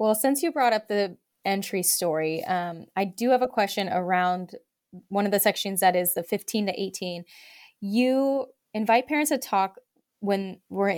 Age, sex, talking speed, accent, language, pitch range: 20-39, female, 175 wpm, American, English, 185-235 Hz